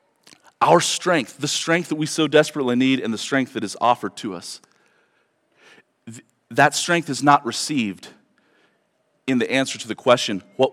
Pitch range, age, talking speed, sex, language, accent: 130-160 Hz, 40-59, 160 wpm, male, English, American